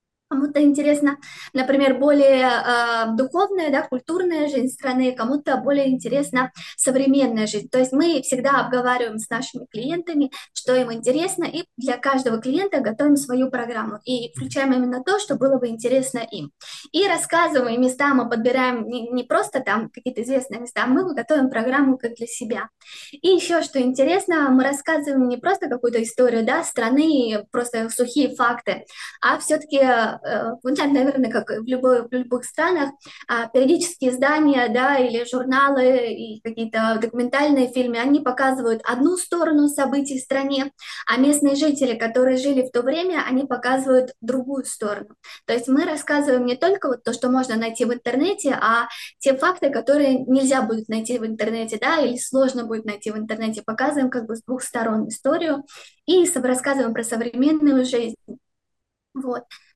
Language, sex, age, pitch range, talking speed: Russian, female, 20-39, 240-280 Hz, 155 wpm